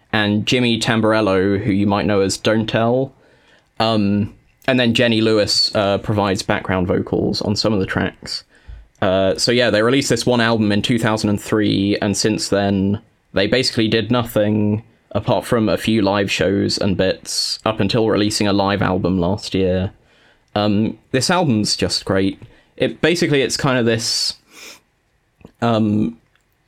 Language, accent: English, British